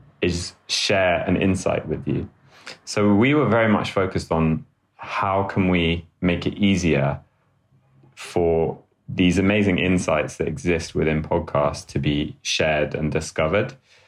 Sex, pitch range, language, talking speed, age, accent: male, 80-105 Hz, English, 135 wpm, 20-39, British